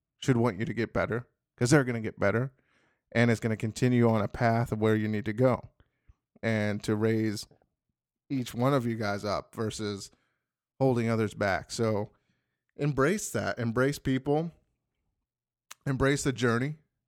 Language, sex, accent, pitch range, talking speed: English, male, American, 110-135 Hz, 160 wpm